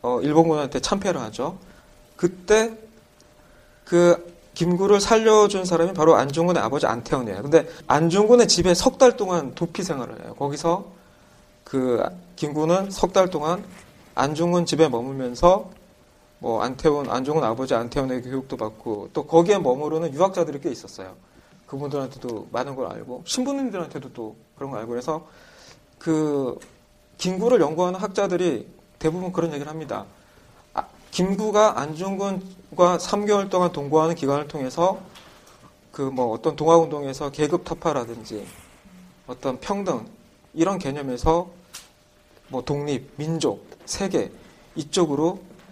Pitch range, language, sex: 145-185 Hz, Korean, male